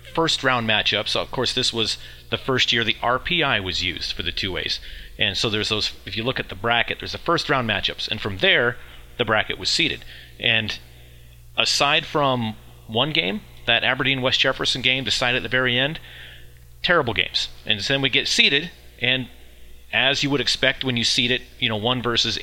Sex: male